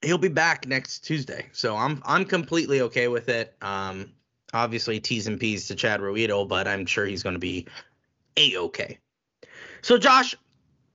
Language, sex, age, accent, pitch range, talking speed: English, male, 30-49, American, 115-185 Hz, 165 wpm